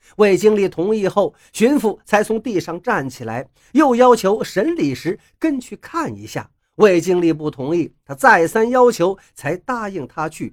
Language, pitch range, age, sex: Chinese, 180-290 Hz, 50-69, male